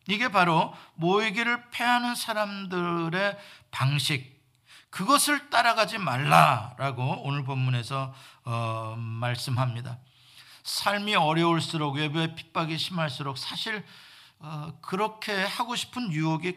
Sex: male